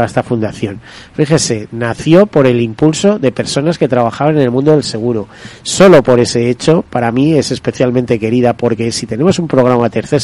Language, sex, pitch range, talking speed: Spanish, male, 120-145 Hz, 190 wpm